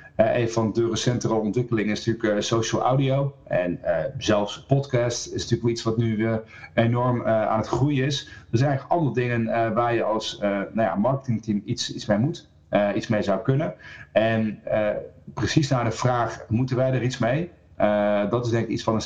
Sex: male